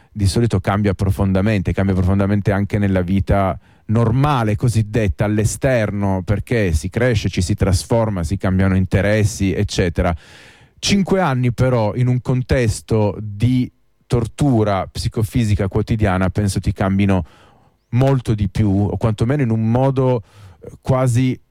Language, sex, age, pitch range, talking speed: Italian, male, 30-49, 100-125 Hz, 125 wpm